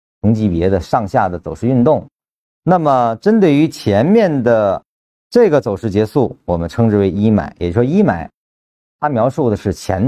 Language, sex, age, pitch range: Chinese, male, 50-69, 95-140 Hz